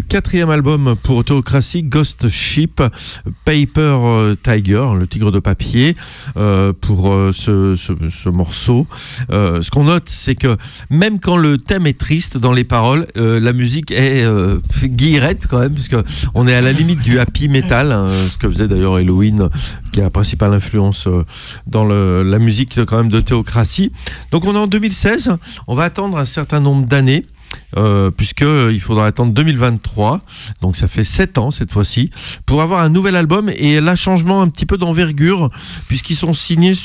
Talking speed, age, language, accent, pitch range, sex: 175 wpm, 40-59, French, French, 105-145 Hz, male